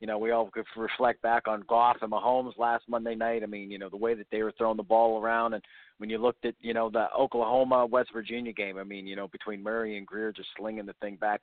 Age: 40-59